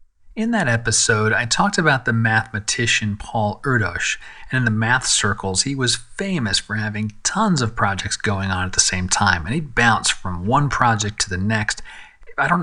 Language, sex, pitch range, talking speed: English, male, 105-130 Hz, 190 wpm